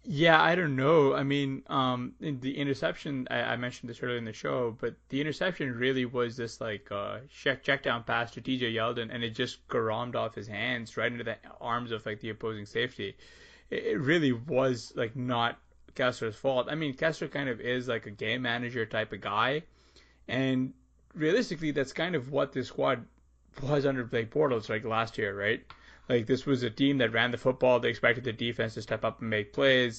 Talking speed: 210 wpm